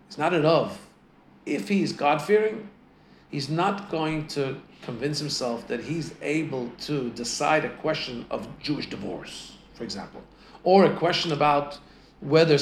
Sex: male